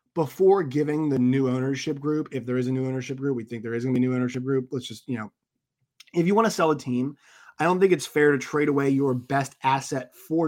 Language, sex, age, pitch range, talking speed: English, male, 20-39, 125-150 Hz, 270 wpm